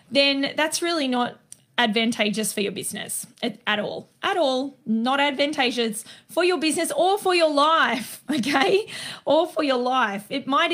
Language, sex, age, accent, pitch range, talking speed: English, female, 20-39, Australian, 230-295 Hz, 160 wpm